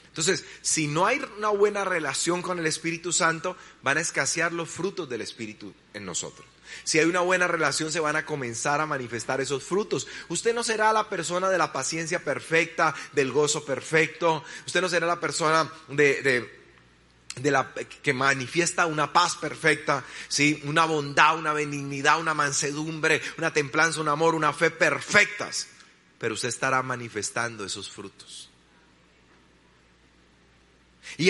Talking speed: 145 wpm